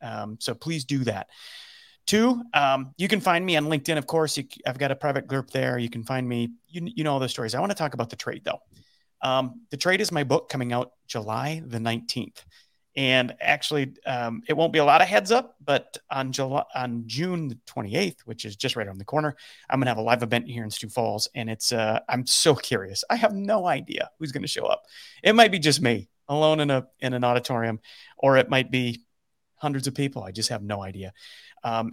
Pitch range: 120-150 Hz